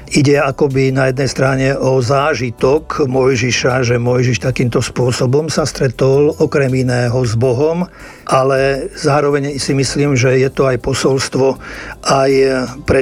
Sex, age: male, 50-69